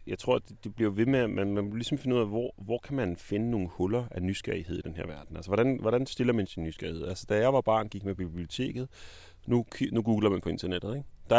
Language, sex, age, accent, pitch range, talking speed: Danish, male, 30-49, native, 90-115 Hz, 270 wpm